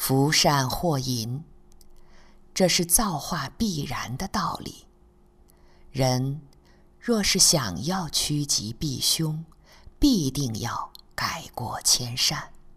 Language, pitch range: Chinese, 115-170 Hz